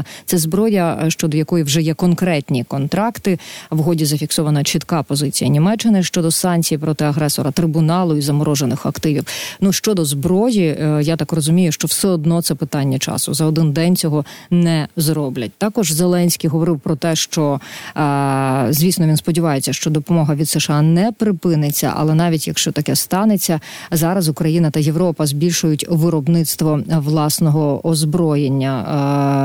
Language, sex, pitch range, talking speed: Ukrainian, female, 150-180 Hz, 135 wpm